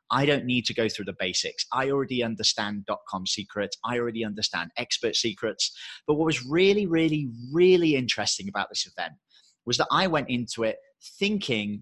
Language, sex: English, male